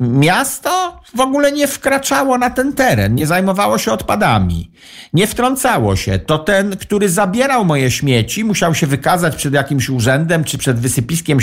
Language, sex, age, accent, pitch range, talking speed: Polish, male, 50-69, native, 130-185 Hz, 160 wpm